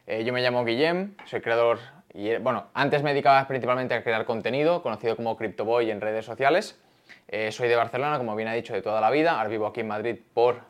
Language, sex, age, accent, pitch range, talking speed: Spanish, male, 20-39, Spanish, 115-150 Hz, 225 wpm